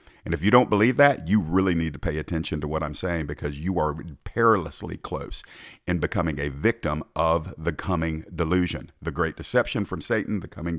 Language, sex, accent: English, male, American